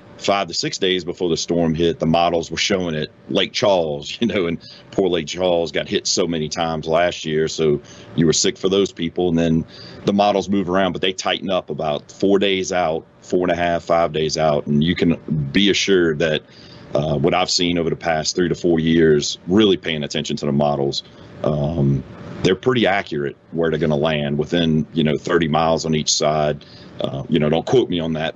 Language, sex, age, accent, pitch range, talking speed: English, male, 40-59, American, 75-90 Hz, 220 wpm